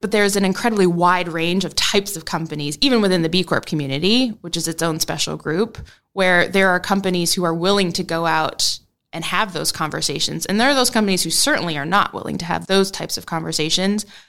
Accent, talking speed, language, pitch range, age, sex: American, 220 wpm, English, 165-210 Hz, 20-39, female